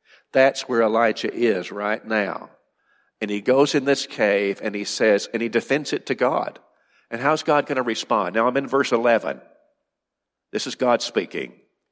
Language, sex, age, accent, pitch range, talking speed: English, male, 50-69, American, 115-150 Hz, 180 wpm